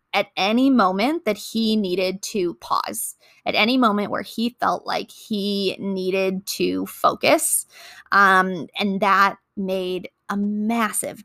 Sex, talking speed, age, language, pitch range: female, 135 wpm, 20-39, English, 195-230 Hz